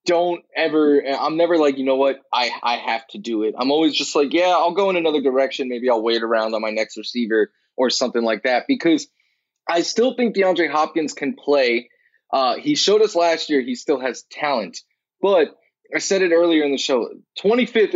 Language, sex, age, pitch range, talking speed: English, male, 20-39, 135-195 Hz, 210 wpm